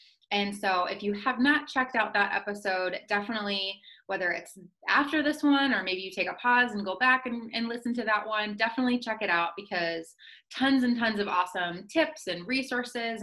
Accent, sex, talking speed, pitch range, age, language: American, female, 200 wpm, 185-250 Hz, 20-39, English